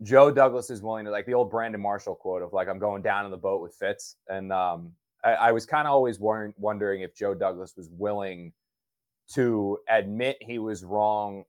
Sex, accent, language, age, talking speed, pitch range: male, American, English, 20-39, 215 wpm, 100-125 Hz